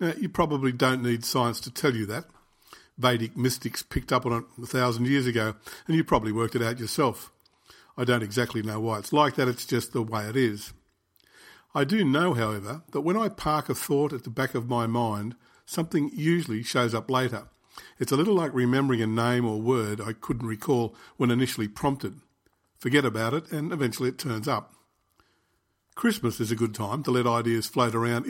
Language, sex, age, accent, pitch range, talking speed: English, male, 50-69, Australian, 115-135 Hz, 200 wpm